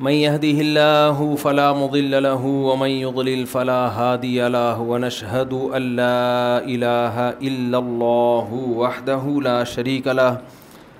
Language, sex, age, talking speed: Urdu, male, 30-49, 115 wpm